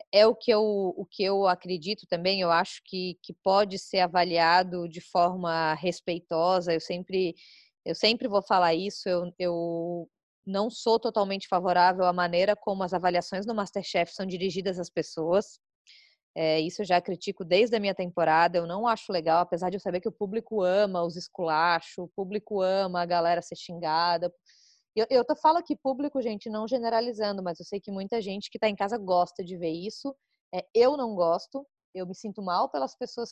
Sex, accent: female, Brazilian